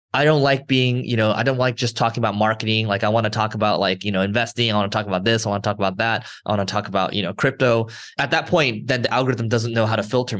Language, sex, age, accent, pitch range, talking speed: English, male, 20-39, American, 110-135 Hz, 310 wpm